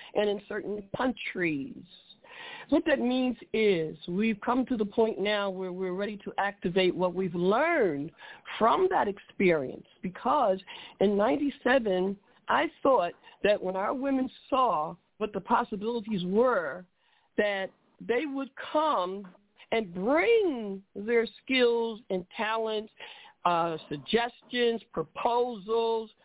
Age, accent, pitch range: 50-69, American, 205-270 Hz